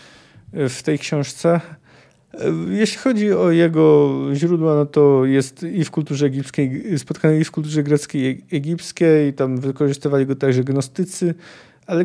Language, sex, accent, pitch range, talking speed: Polish, male, native, 130-155 Hz, 140 wpm